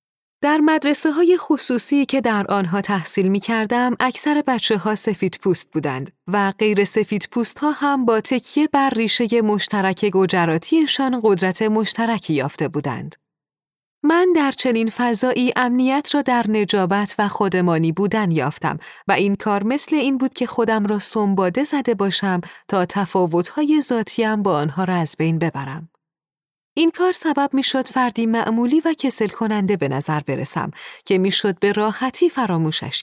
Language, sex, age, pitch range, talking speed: Persian, female, 30-49, 185-250 Hz, 150 wpm